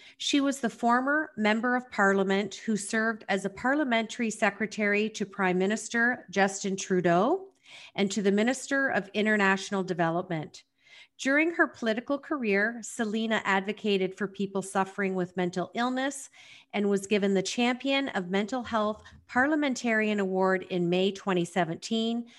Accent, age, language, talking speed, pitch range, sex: American, 40-59, English, 135 wpm, 190-235 Hz, female